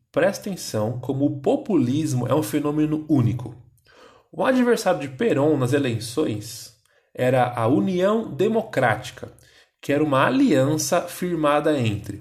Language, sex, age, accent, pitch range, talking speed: Portuguese, male, 20-39, Brazilian, 120-185 Hz, 125 wpm